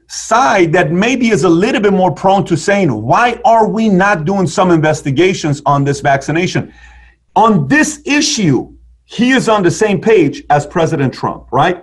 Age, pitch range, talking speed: 40-59, 145-185 Hz, 170 wpm